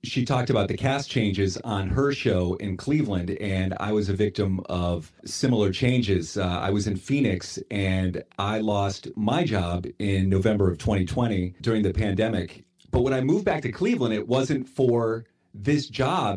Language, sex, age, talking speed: English, male, 40-59, 175 wpm